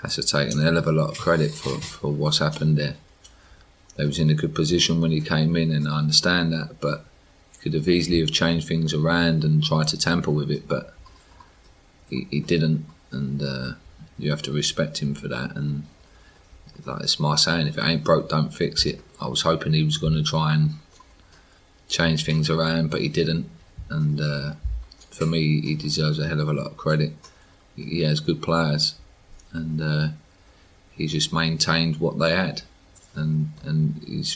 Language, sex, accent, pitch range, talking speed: English, male, British, 75-85 Hz, 195 wpm